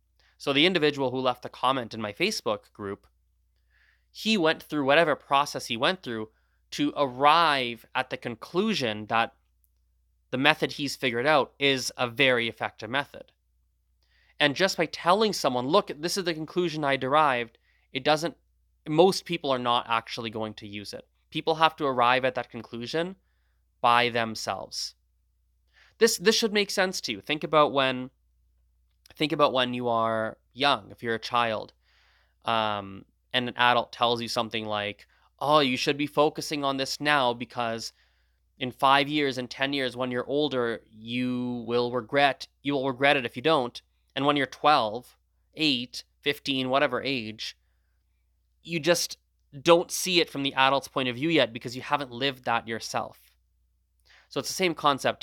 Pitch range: 105-145 Hz